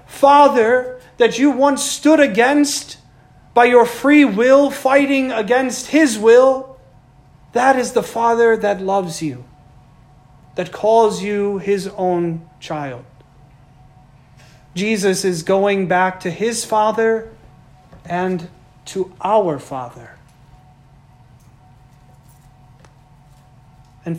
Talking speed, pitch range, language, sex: 95 wpm, 145-210 Hz, English, male